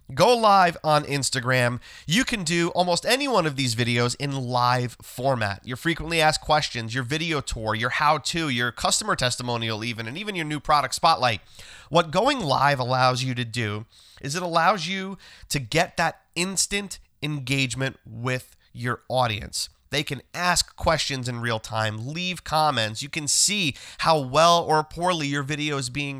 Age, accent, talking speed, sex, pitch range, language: 30-49, American, 170 wpm, male, 130-175 Hz, English